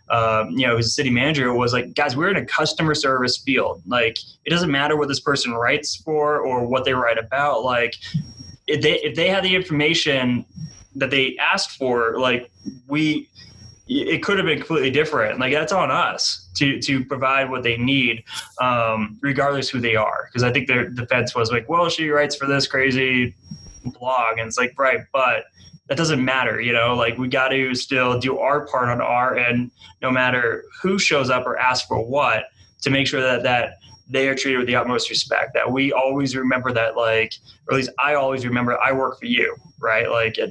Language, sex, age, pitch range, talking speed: English, male, 20-39, 120-145 Hz, 205 wpm